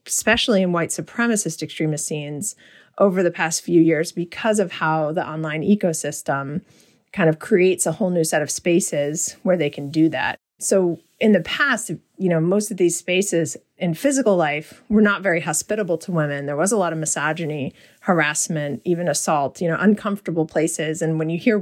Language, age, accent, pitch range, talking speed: English, 30-49, American, 160-195 Hz, 185 wpm